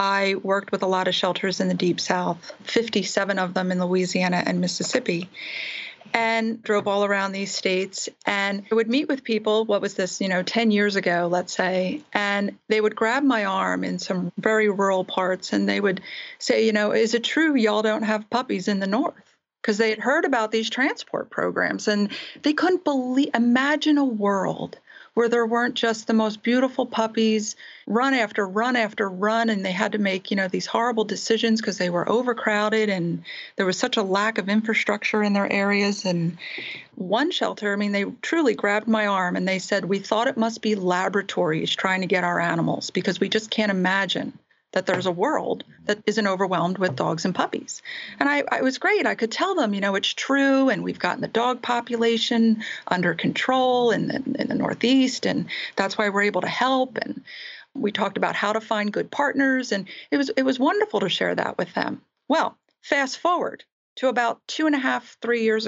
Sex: female